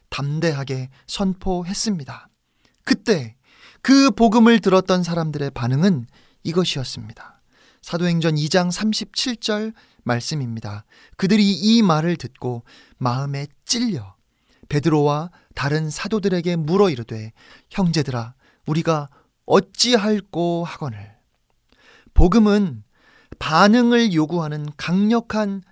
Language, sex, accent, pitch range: Korean, male, native, 130-195 Hz